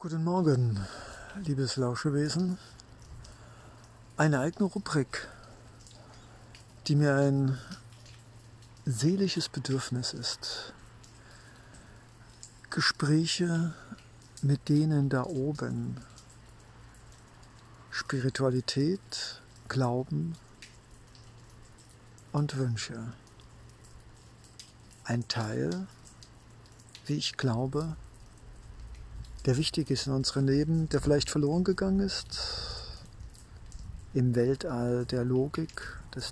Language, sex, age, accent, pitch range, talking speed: German, male, 60-79, German, 115-140 Hz, 70 wpm